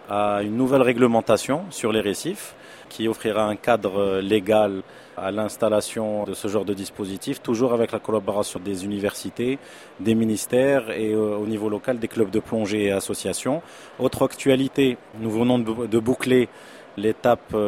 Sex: male